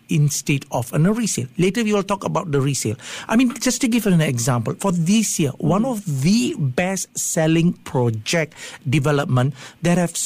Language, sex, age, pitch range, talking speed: English, male, 60-79, 145-200 Hz, 170 wpm